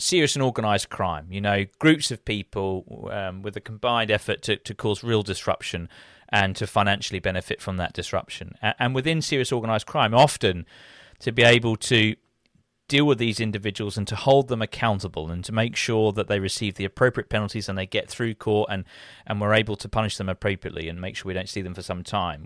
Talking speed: 210 wpm